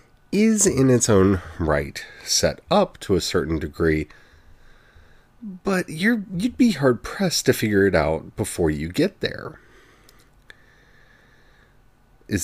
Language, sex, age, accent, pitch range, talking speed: English, male, 40-59, American, 85-140 Hz, 130 wpm